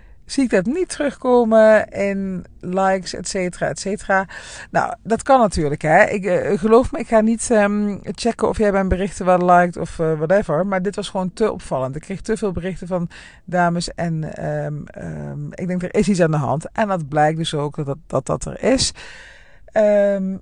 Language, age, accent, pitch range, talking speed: Dutch, 40-59, Dutch, 155-195 Hz, 205 wpm